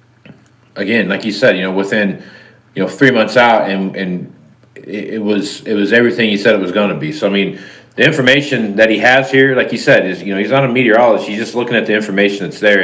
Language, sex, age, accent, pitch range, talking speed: English, male, 40-59, American, 100-130 Hz, 245 wpm